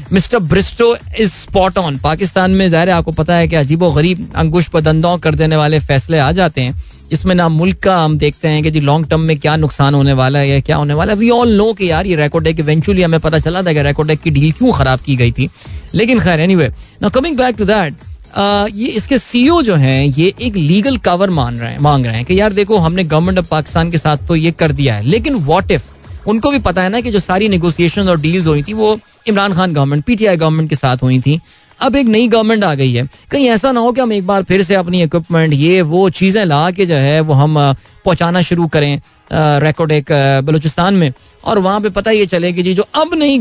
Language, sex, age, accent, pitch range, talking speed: Hindi, male, 20-39, native, 150-200 Hz, 235 wpm